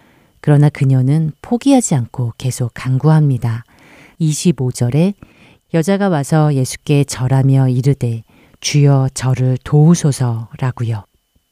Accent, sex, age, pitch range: native, female, 40-59, 125-155 Hz